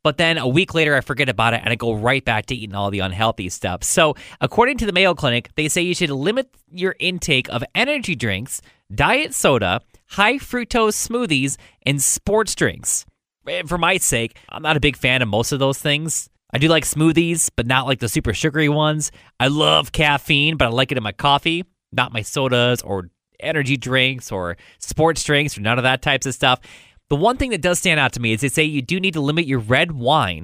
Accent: American